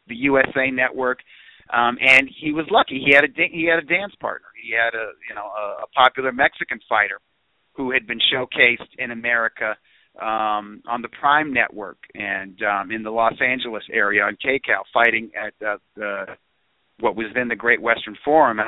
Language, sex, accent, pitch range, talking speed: English, male, American, 120-155 Hz, 185 wpm